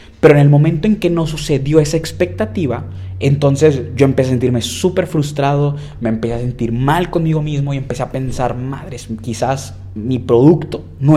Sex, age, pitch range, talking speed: male, 20-39, 110-145 Hz, 175 wpm